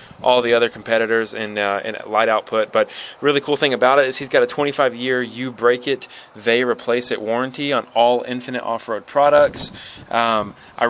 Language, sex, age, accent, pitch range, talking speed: English, male, 20-39, American, 115-135 Hz, 195 wpm